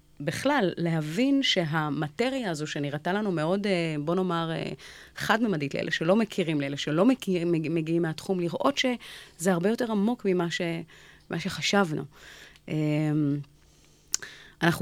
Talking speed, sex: 105 wpm, female